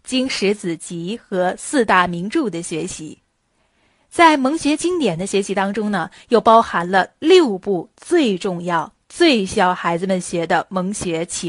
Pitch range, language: 180-250 Hz, Chinese